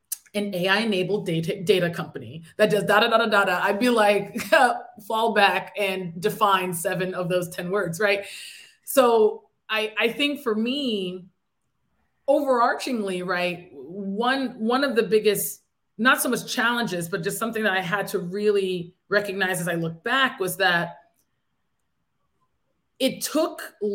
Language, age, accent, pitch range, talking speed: English, 30-49, American, 185-225 Hz, 150 wpm